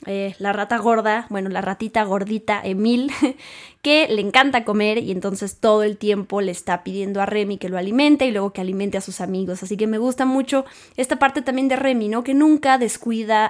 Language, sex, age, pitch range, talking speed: Spanish, female, 20-39, 200-260 Hz, 210 wpm